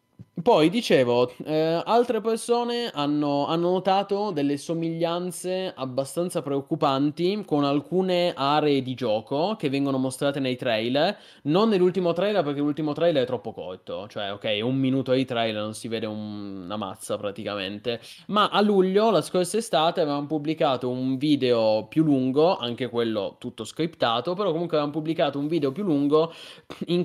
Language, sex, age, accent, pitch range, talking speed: Italian, male, 20-39, native, 130-170 Hz, 155 wpm